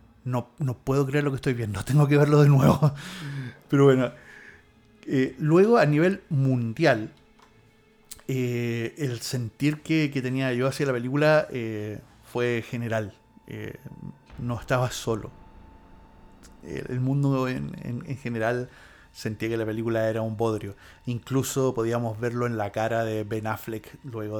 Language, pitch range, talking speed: English, 110-145 Hz, 150 wpm